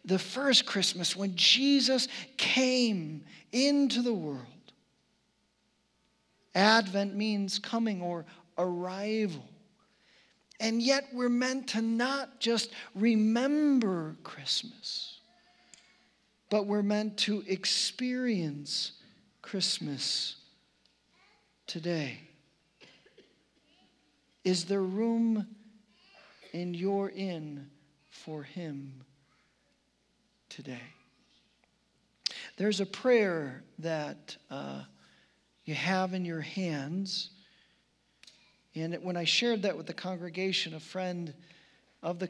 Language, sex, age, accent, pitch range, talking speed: English, male, 50-69, American, 160-210 Hz, 85 wpm